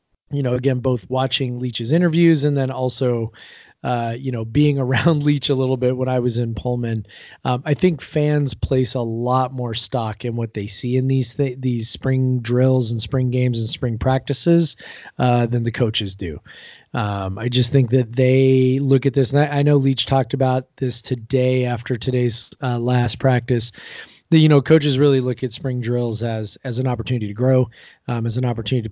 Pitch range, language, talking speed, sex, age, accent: 120-135 Hz, English, 200 wpm, male, 30-49, American